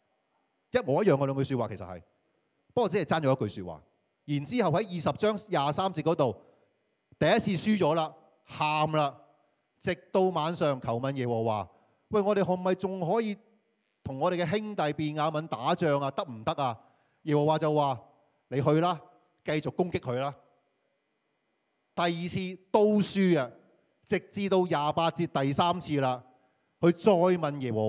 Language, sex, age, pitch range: Chinese, male, 30-49, 115-175 Hz